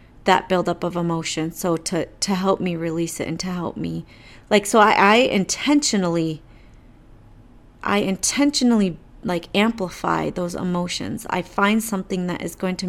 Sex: female